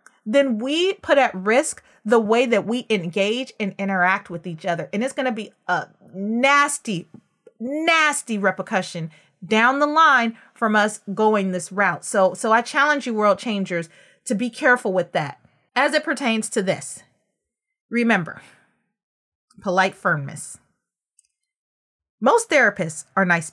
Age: 30-49